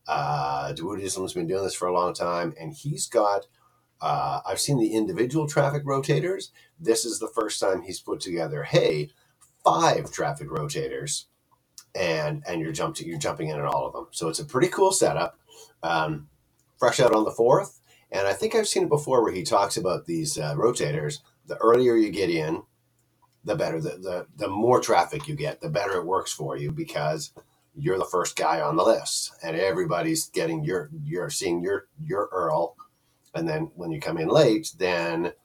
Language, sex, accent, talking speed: English, male, American, 195 wpm